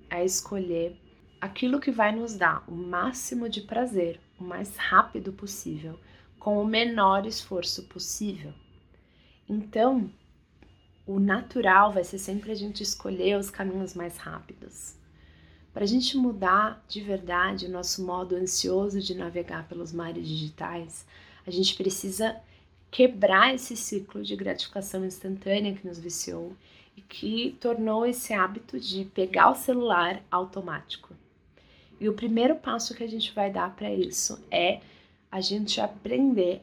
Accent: Brazilian